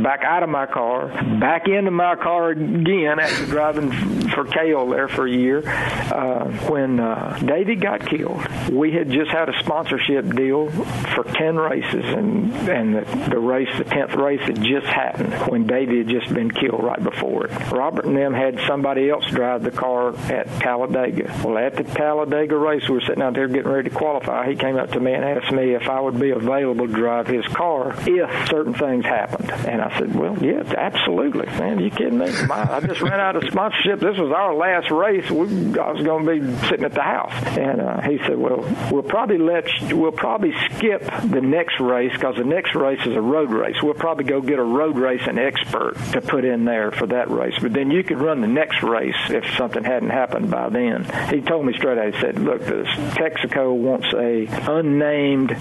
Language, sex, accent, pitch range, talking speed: English, male, American, 125-155 Hz, 215 wpm